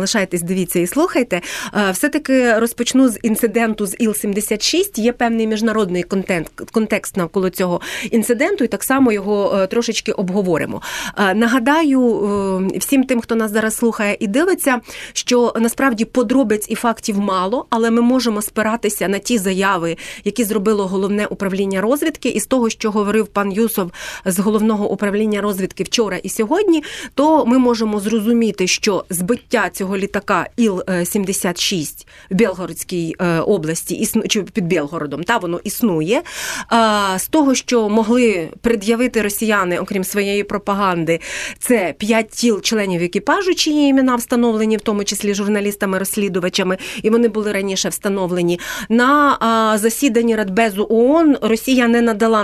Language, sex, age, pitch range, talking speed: Ukrainian, female, 30-49, 195-235 Hz, 135 wpm